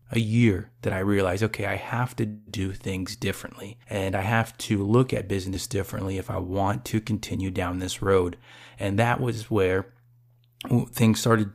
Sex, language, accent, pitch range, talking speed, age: male, English, American, 100-120 Hz, 175 wpm, 30-49